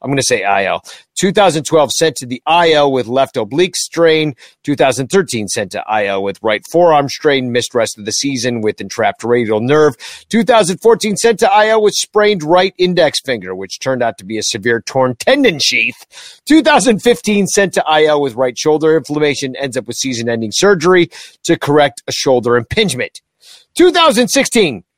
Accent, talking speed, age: American, 165 wpm, 50-69